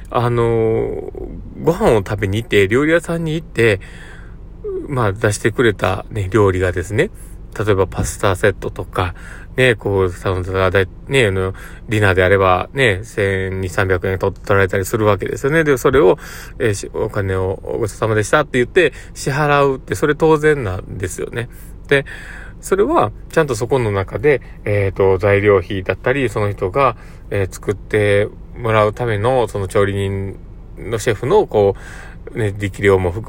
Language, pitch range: Japanese, 95-130 Hz